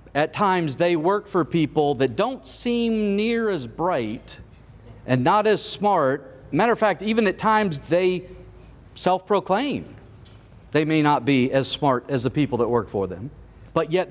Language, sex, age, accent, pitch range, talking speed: English, male, 40-59, American, 130-175 Hz, 165 wpm